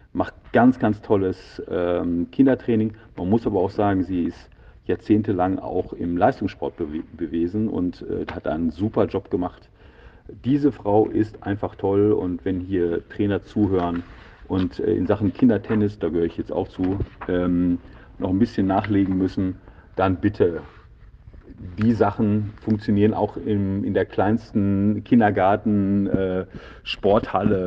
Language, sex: German, male